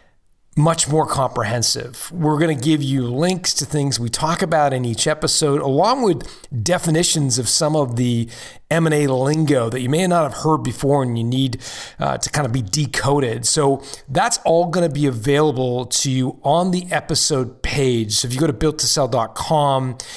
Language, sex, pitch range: English, male, 125-155 Hz